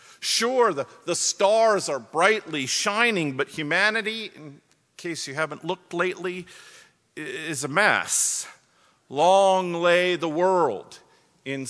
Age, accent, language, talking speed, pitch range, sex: 50-69, American, English, 120 wpm, 155-220 Hz, male